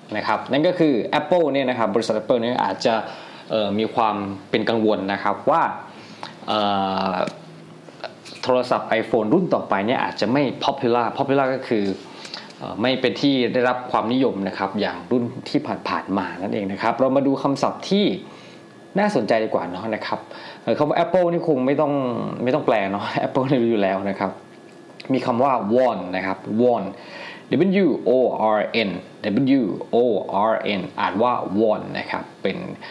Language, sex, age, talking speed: English, male, 20-39, 35 wpm